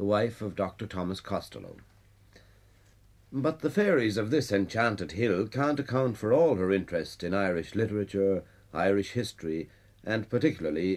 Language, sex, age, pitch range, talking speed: English, male, 60-79, 100-125 Hz, 140 wpm